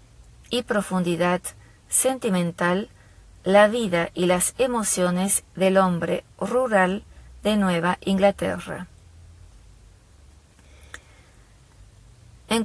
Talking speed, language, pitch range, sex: 70 wpm, Spanish, 160-205 Hz, female